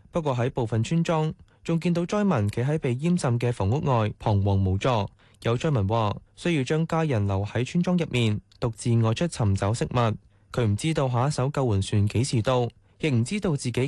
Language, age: Chinese, 20-39